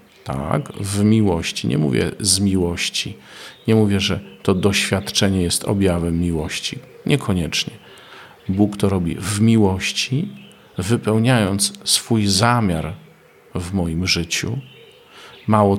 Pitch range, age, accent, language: 85-105 Hz, 50-69, native, Polish